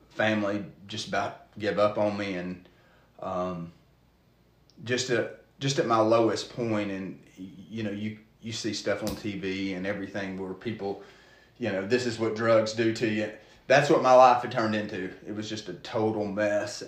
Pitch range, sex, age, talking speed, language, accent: 105-120 Hz, male, 30-49, 180 wpm, English, American